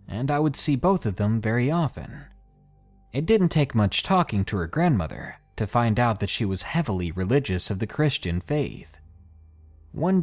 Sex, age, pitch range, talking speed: male, 20-39, 95-140 Hz, 175 wpm